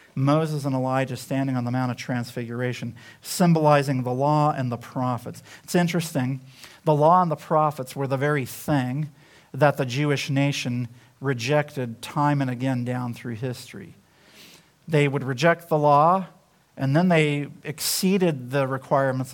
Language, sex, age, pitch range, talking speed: English, male, 50-69, 135-165 Hz, 150 wpm